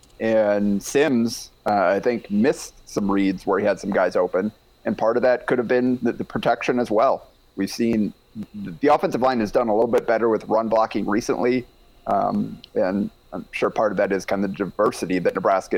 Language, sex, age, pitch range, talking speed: English, male, 30-49, 100-125 Hz, 210 wpm